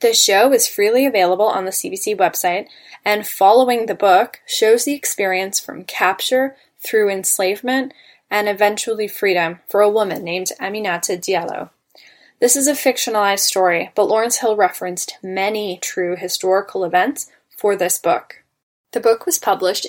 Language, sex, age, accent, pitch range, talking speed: English, female, 10-29, American, 185-235 Hz, 150 wpm